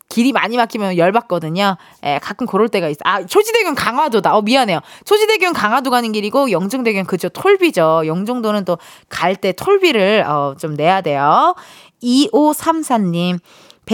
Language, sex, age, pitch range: Korean, female, 20-39, 185-315 Hz